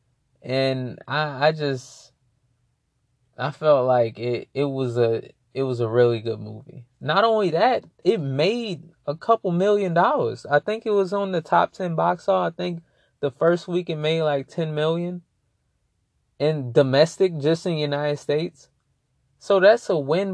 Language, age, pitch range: English, 20-39, 125-170 Hz